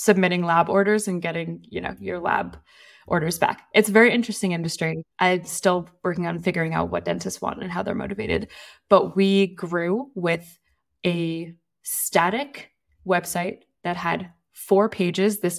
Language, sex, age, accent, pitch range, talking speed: English, female, 20-39, American, 170-200 Hz, 160 wpm